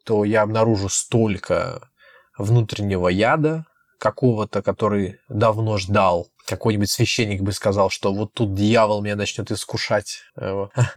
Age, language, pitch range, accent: 20-39, Russian, 100-115 Hz, native